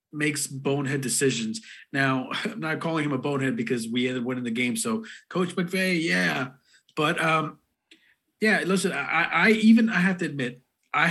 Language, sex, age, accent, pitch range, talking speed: English, male, 30-49, American, 130-155 Hz, 175 wpm